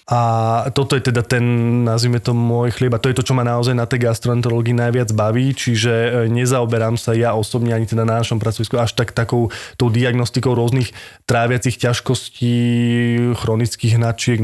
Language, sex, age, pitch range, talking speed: Slovak, male, 20-39, 115-125 Hz, 165 wpm